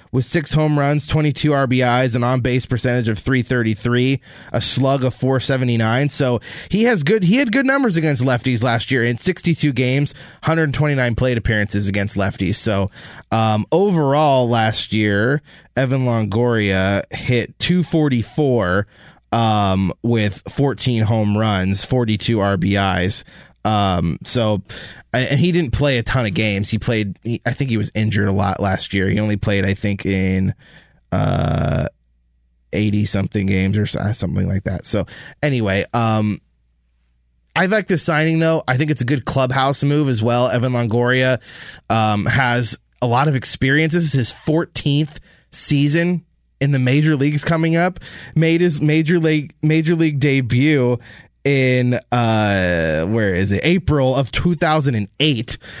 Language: English